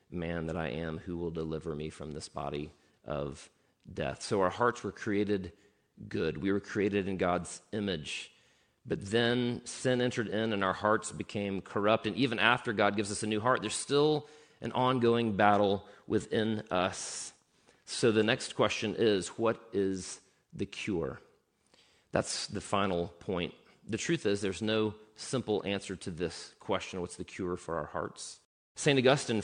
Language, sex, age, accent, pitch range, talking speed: English, male, 40-59, American, 95-115 Hz, 165 wpm